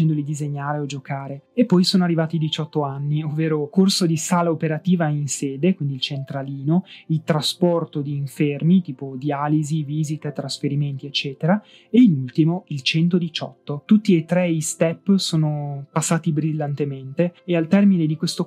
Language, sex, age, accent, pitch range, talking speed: Italian, male, 20-39, native, 145-175 Hz, 155 wpm